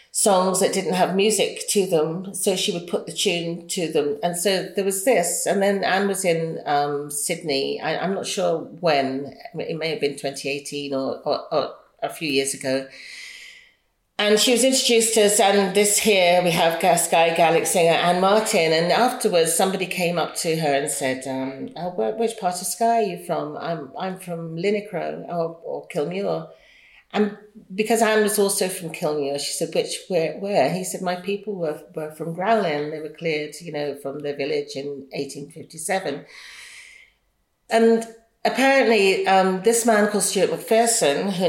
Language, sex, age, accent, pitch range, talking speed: English, female, 40-59, British, 155-210 Hz, 180 wpm